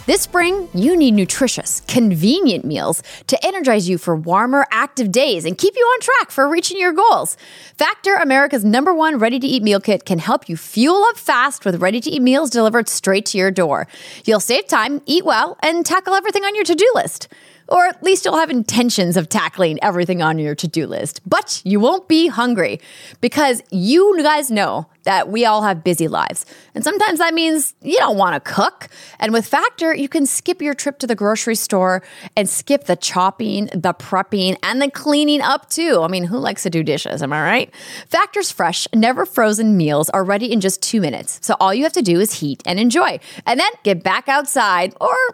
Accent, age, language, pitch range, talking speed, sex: American, 30-49, English, 195-310 Hz, 200 wpm, female